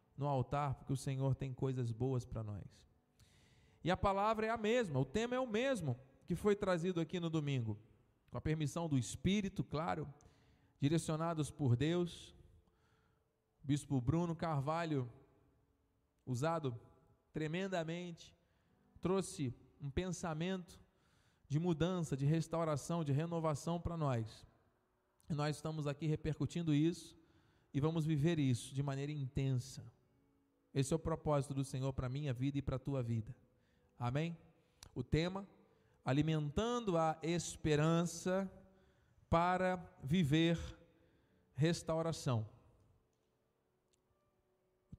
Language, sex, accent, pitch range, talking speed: Portuguese, male, Brazilian, 125-165 Hz, 120 wpm